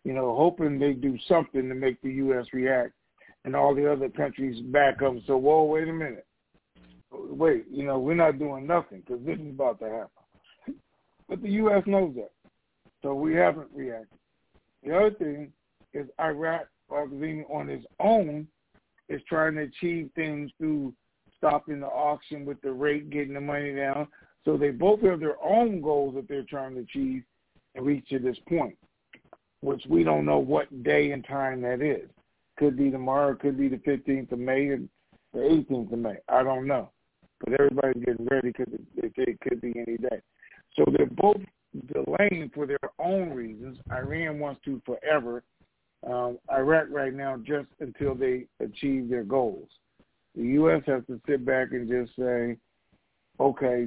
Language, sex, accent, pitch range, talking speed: English, male, American, 130-155 Hz, 175 wpm